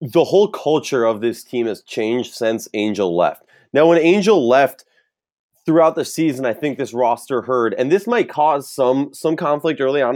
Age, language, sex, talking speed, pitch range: 20-39, English, male, 190 wpm, 115-160 Hz